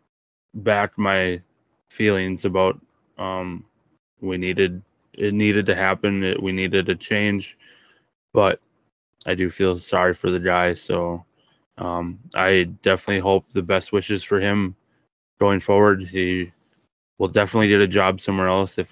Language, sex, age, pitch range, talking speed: English, male, 20-39, 90-100 Hz, 140 wpm